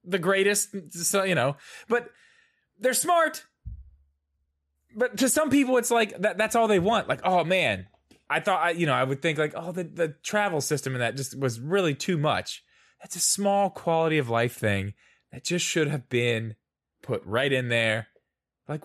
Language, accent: English, American